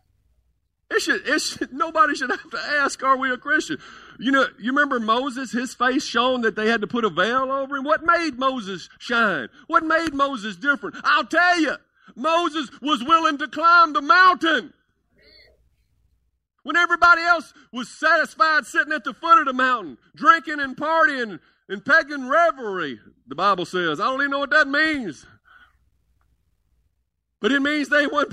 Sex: male